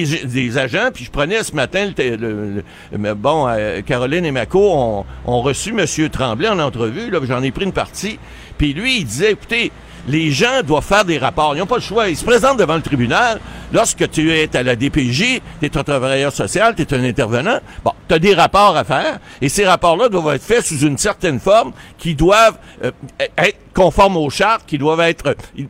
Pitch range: 125-180 Hz